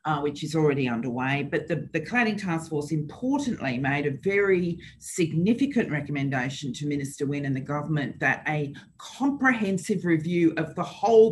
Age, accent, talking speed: 40-59, Australian, 160 wpm